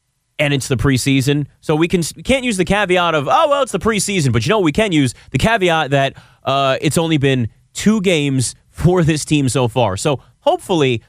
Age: 30-49